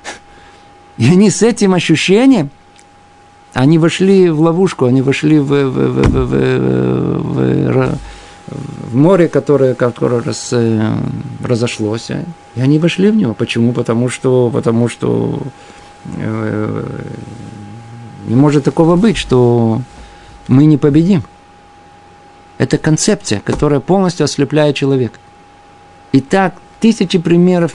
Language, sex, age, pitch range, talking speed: Russian, male, 50-69, 105-150 Hz, 105 wpm